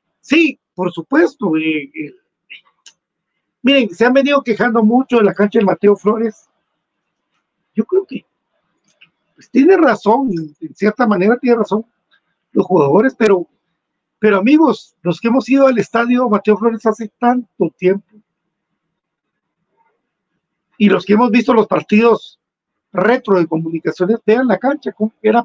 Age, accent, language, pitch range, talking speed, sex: 50-69, Mexican, Spanish, 180-235 Hz, 135 wpm, male